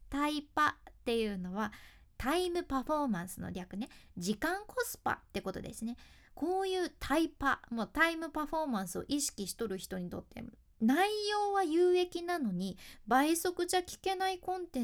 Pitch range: 210-345 Hz